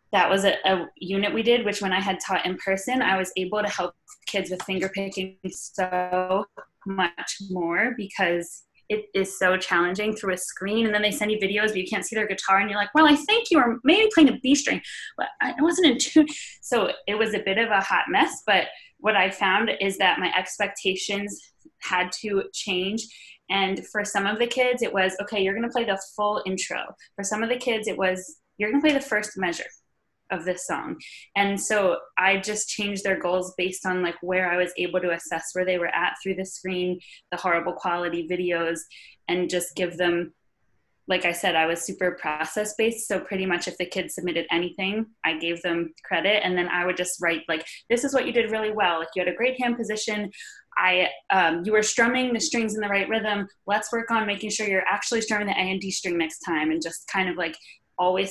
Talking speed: 225 wpm